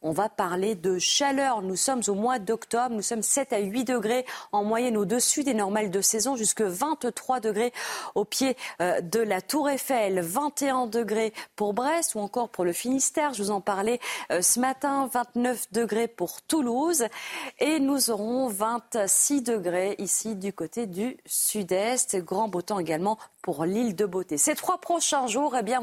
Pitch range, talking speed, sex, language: 190-240 Hz, 165 wpm, female, French